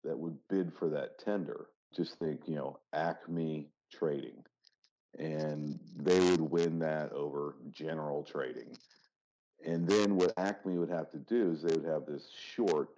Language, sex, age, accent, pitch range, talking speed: English, male, 50-69, American, 75-90 Hz, 155 wpm